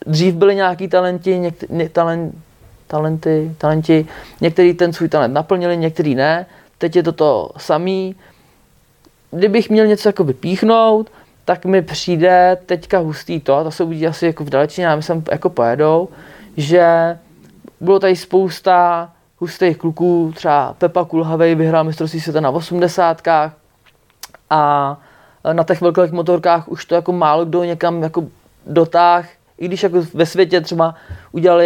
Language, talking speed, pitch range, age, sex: Czech, 135 wpm, 155-175 Hz, 20-39, male